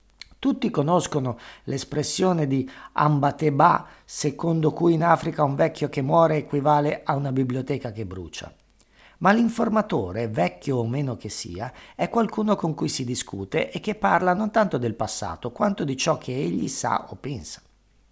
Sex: male